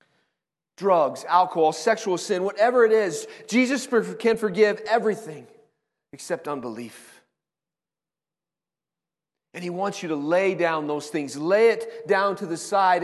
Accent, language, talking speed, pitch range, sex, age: American, English, 130 wpm, 170-220 Hz, male, 40-59